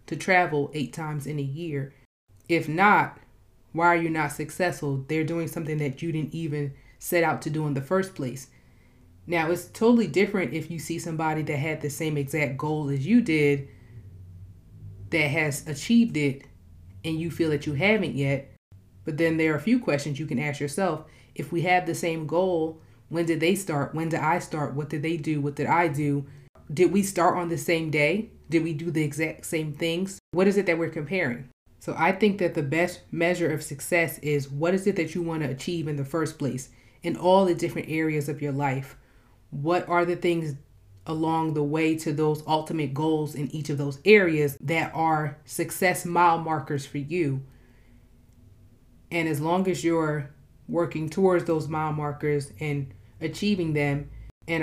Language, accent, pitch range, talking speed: English, American, 140-170 Hz, 195 wpm